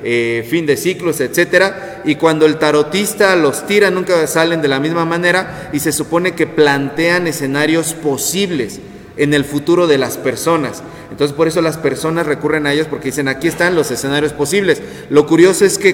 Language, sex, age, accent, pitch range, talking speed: Spanish, male, 30-49, Mexican, 145-180 Hz, 185 wpm